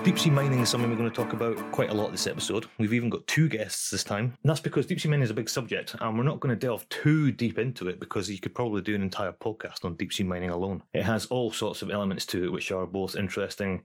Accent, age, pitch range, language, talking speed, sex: British, 30-49, 95-115 Hz, English, 290 wpm, male